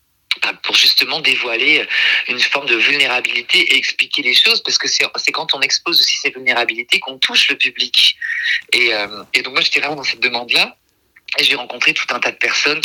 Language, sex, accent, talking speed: French, male, French, 195 wpm